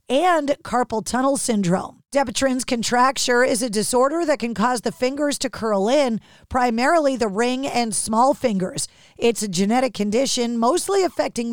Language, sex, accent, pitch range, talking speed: English, female, American, 235-295 Hz, 150 wpm